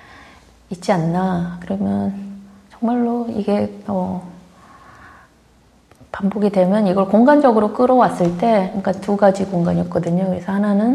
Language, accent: Korean, native